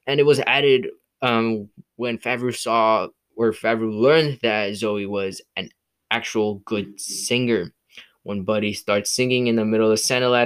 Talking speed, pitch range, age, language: 155 wpm, 110-130 Hz, 10-29, English